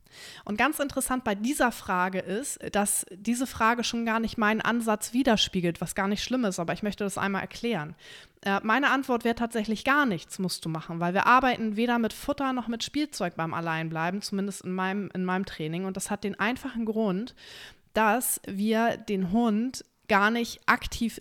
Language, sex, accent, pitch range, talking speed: German, female, German, 190-230 Hz, 190 wpm